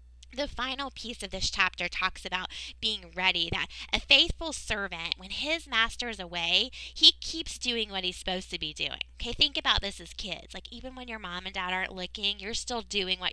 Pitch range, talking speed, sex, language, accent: 180-275 Hz, 210 wpm, female, English, American